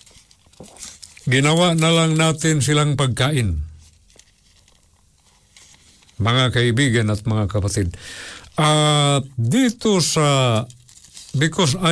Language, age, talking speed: Filipino, 50-69, 75 wpm